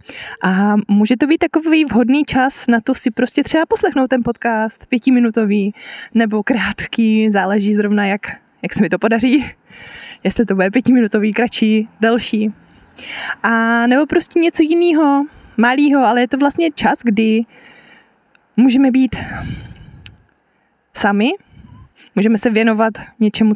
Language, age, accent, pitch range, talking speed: Czech, 20-39, native, 205-265 Hz, 130 wpm